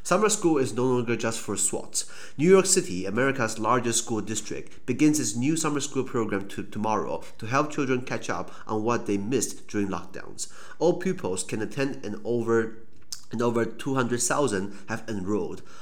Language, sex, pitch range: Chinese, male, 100-125 Hz